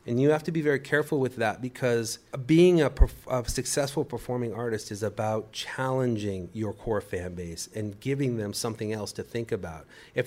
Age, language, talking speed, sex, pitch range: 40-59, English, 185 wpm, male, 105-130 Hz